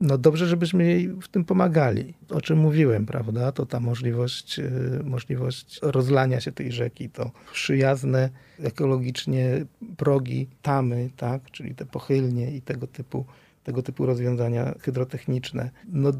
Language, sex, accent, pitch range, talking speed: Polish, male, native, 125-145 Hz, 135 wpm